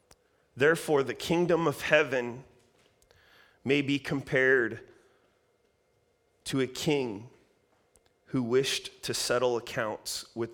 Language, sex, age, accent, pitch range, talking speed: English, male, 30-49, American, 110-145 Hz, 95 wpm